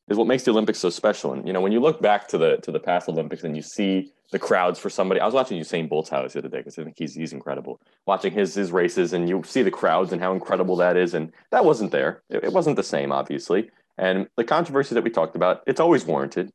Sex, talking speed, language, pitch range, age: male, 270 wpm, English, 90-115 Hz, 30-49